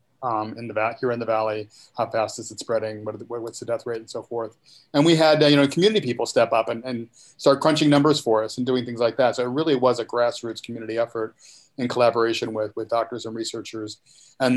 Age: 40-59